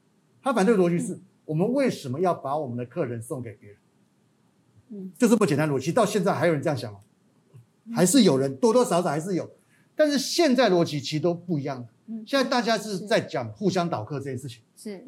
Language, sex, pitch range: Chinese, male, 140-200 Hz